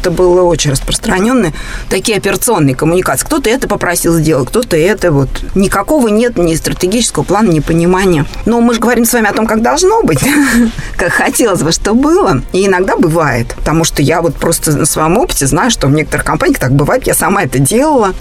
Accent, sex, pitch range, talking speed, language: native, female, 160-235 Hz, 195 wpm, Russian